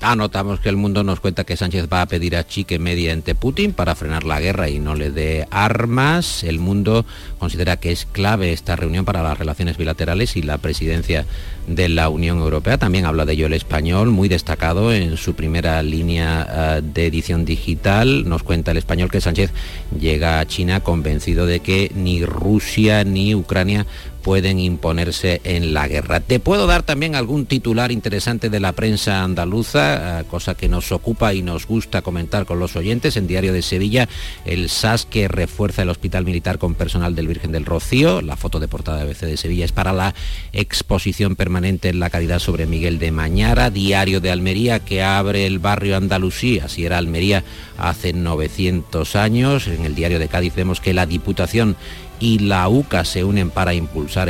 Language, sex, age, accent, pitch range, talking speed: Spanish, male, 50-69, Spanish, 85-100 Hz, 185 wpm